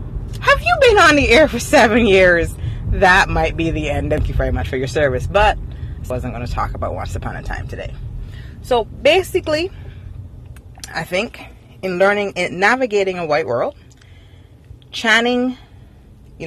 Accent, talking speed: American, 170 wpm